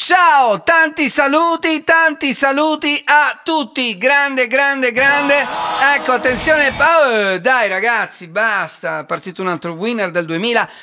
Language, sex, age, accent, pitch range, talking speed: Italian, male, 40-59, native, 215-300 Hz, 120 wpm